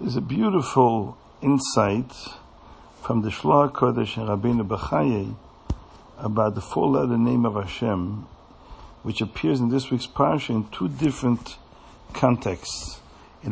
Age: 50-69